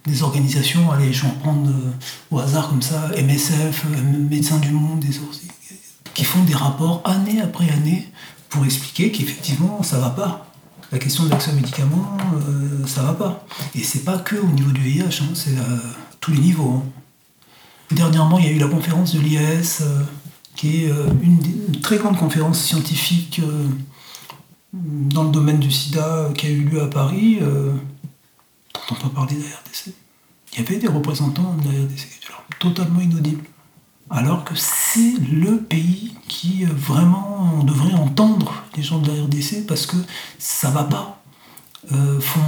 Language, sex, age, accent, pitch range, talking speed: French, male, 60-79, French, 140-170 Hz, 170 wpm